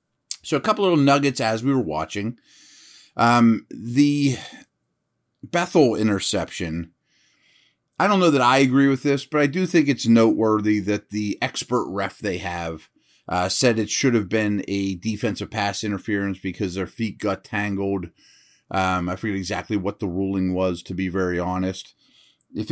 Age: 30-49